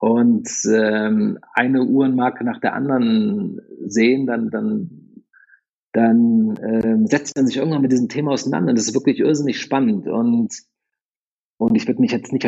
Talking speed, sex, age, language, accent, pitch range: 155 wpm, male, 50-69, German, German, 120-170 Hz